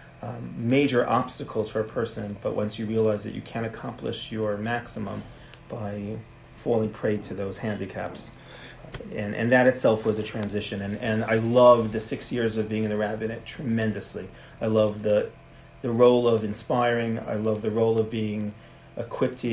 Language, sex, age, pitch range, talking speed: English, male, 30-49, 105-115 Hz, 175 wpm